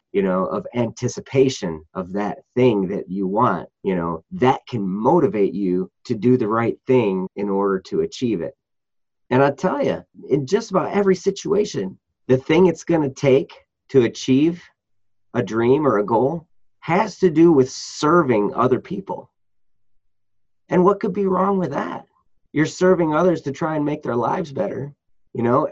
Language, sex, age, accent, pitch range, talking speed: English, male, 30-49, American, 110-160 Hz, 175 wpm